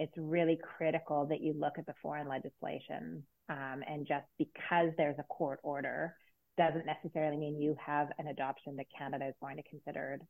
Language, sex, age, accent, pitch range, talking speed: English, female, 30-49, American, 150-170 Hz, 180 wpm